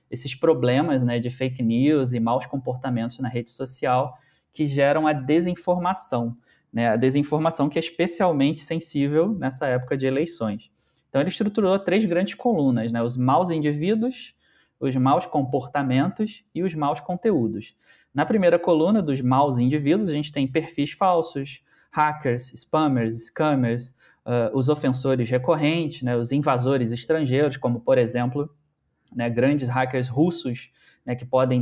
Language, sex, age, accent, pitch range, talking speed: Portuguese, male, 20-39, Brazilian, 125-155 Hz, 140 wpm